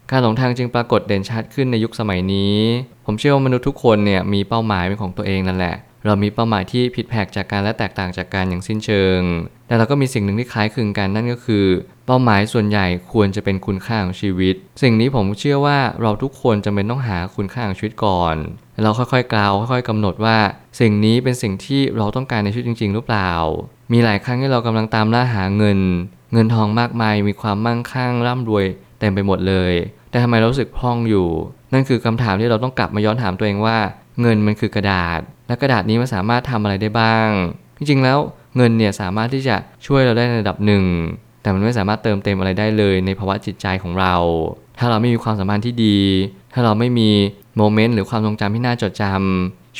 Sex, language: male, Thai